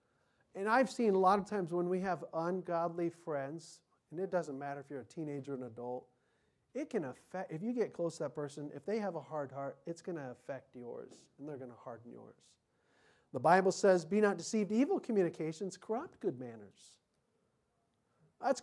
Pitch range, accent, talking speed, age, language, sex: 140-190 Hz, American, 200 wpm, 40-59, English, male